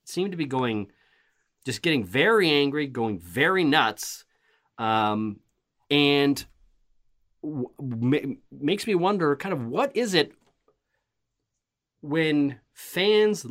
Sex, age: male, 30-49